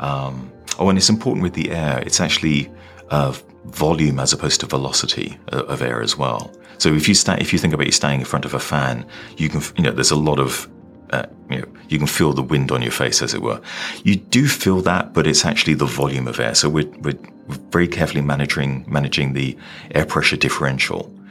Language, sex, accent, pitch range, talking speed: English, male, British, 70-80 Hz, 230 wpm